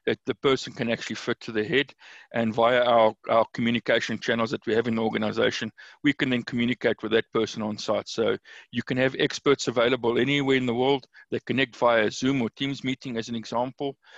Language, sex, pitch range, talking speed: English, male, 115-130 Hz, 210 wpm